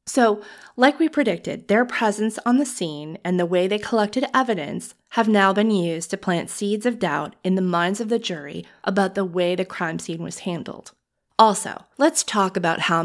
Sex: female